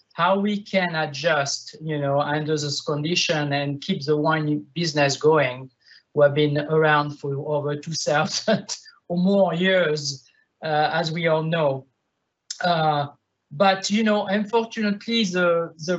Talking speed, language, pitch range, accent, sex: 135 wpm, English, 150-190 Hz, French, male